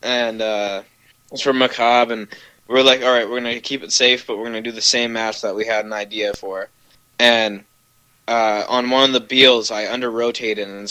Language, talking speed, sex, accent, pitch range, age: English, 230 wpm, male, American, 105-120 Hz, 20-39